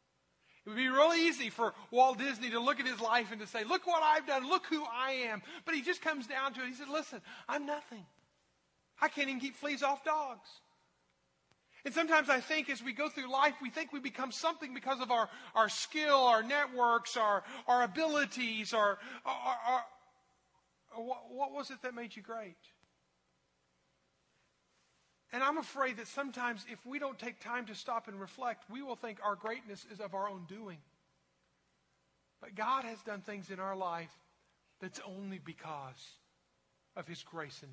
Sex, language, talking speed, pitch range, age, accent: male, English, 190 wpm, 185-275 Hz, 40-59, American